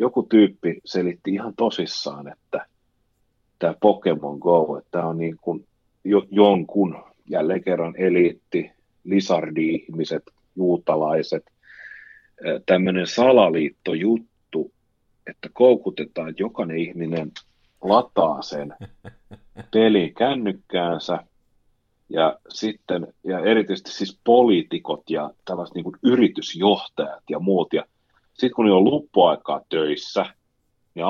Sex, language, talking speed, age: male, Finnish, 100 wpm, 40-59